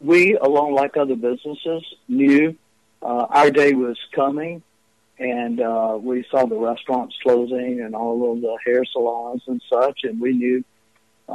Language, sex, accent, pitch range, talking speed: English, male, American, 115-140 Hz, 155 wpm